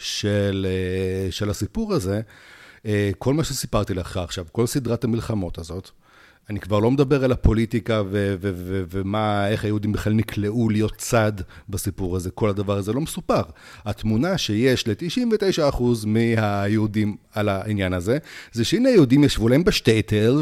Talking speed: 145 wpm